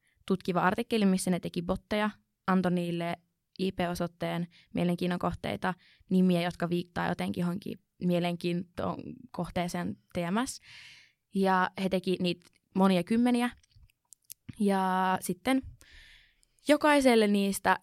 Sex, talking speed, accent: female, 95 wpm, native